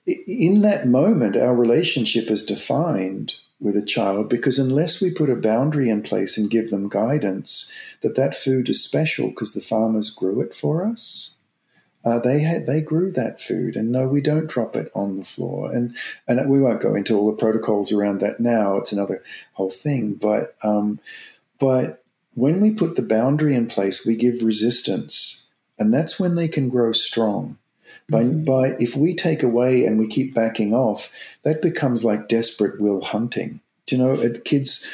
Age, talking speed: 40-59, 180 wpm